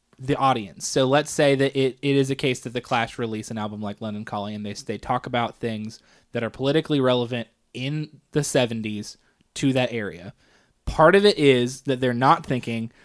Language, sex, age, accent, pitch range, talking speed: English, male, 20-39, American, 120-145 Hz, 200 wpm